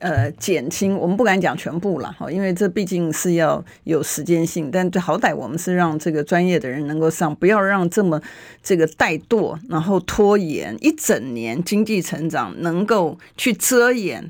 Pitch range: 160-195 Hz